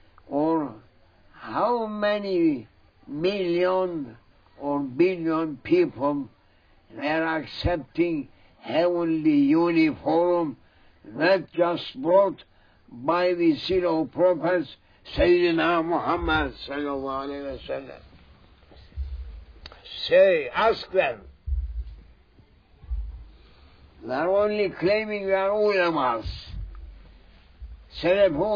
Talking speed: 65 wpm